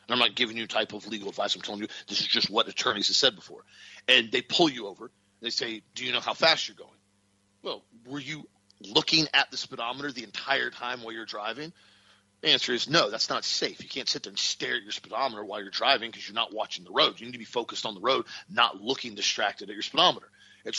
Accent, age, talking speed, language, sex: American, 40-59, 250 wpm, English, male